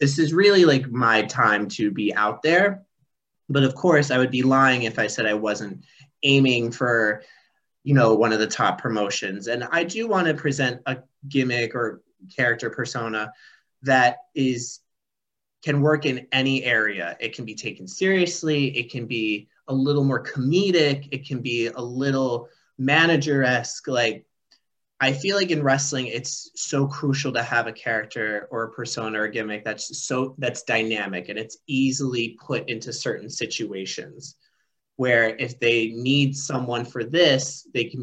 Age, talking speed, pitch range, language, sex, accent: 30-49, 165 wpm, 115-145 Hz, English, male, American